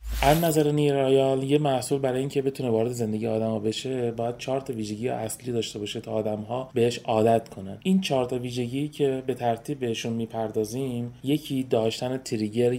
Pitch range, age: 115-135 Hz, 30-49